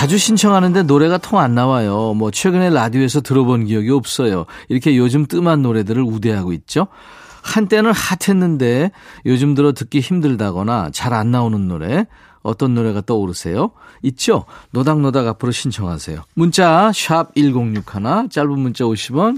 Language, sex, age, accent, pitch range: Korean, male, 40-59, native, 115-175 Hz